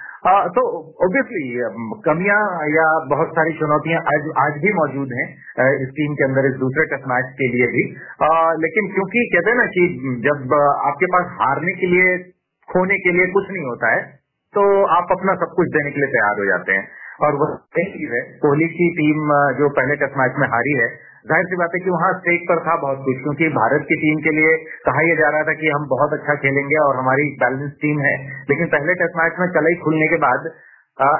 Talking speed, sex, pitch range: 215 wpm, male, 140-180 Hz